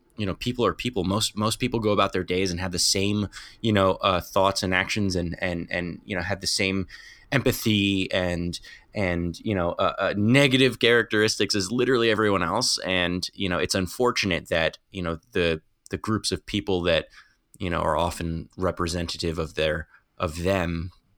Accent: American